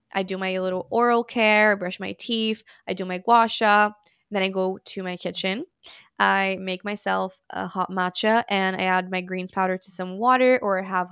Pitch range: 185-215 Hz